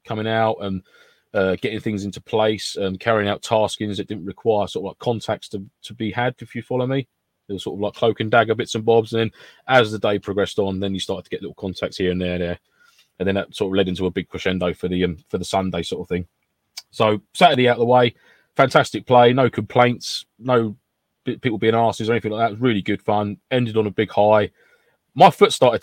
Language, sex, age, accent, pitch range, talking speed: English, male, 20-39, British, 95-120 Hz, 250 wpm